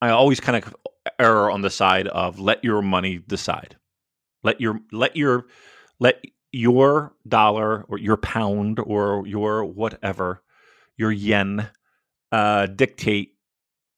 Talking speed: 130 wpm